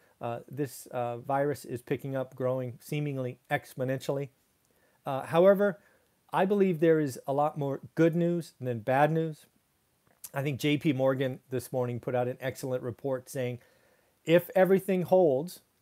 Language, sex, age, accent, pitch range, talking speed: English, male, 40-59, American, 125-155 Hz, 150 wpm